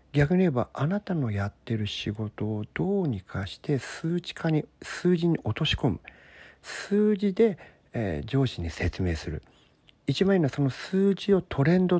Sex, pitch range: male, 105-170 Hz